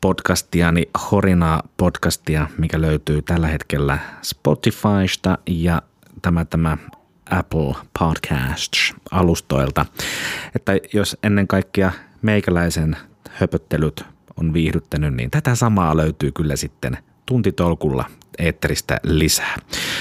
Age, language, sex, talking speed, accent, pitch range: 30-49, Finnish, male, 95 wpm, native, 80-100 Hz